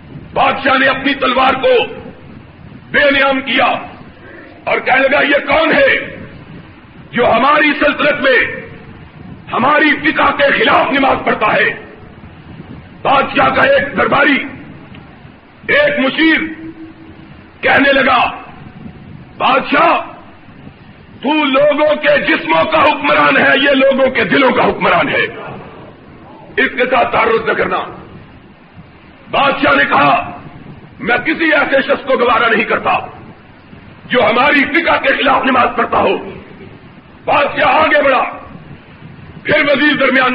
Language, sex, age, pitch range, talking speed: Urdu, male, 50-69, 265-300 Hz, 115 wpm